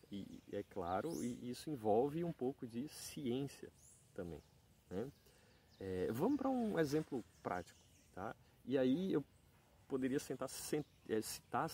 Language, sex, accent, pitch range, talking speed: Portuguese, male, Brazilian, 110-145 Hz, 125 wpm